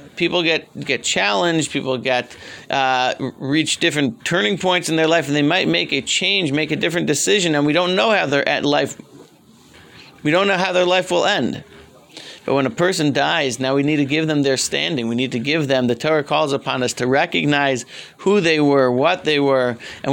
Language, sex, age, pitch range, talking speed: English, male, 40-59, 130-160 Hz, 210 wpm